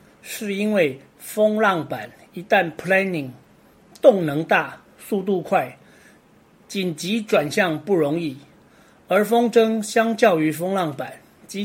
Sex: male